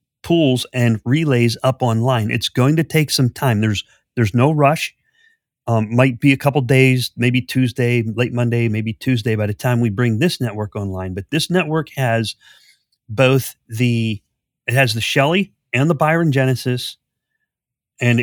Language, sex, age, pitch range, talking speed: English, male, 40-59, 110-135 Hz, 165 wpm